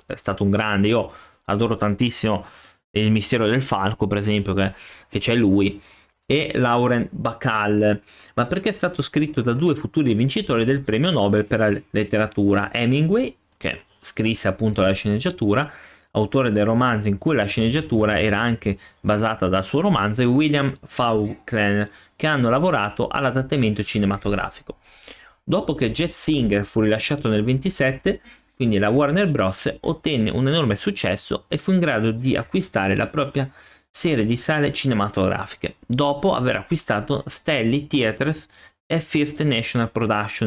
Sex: male